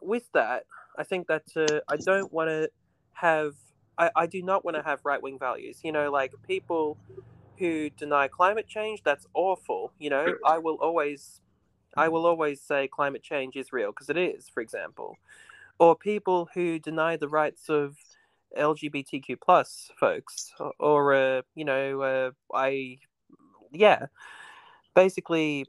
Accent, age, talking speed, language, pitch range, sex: Australian, 20-39, 155 wpm, English, 145-175 Hz, male